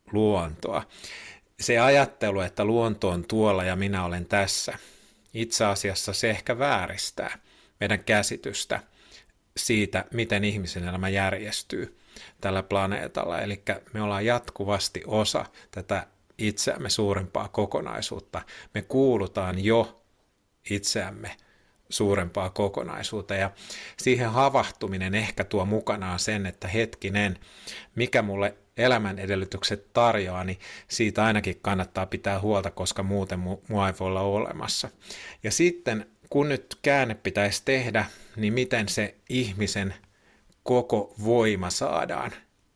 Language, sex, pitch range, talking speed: Finnish, male, 95-110 Hz, 115 wpm